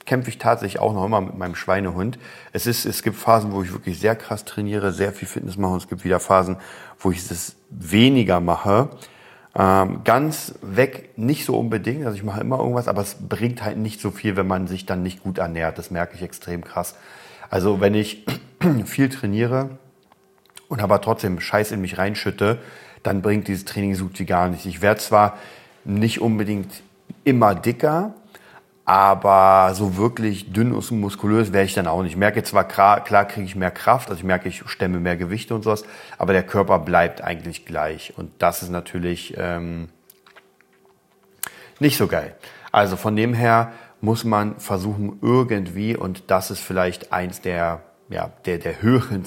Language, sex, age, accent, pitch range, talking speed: German, male, 40-59, German, 95-115 Hz, 185 wpm